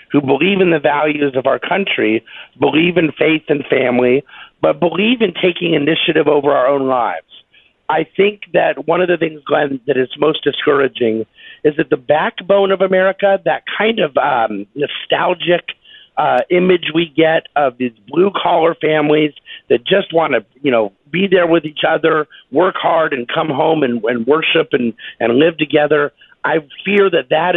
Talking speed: 175 wpm